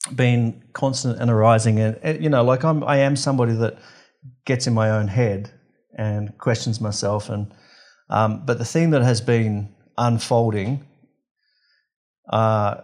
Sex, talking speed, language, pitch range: male, 145 wpm, English, 110-135 Hz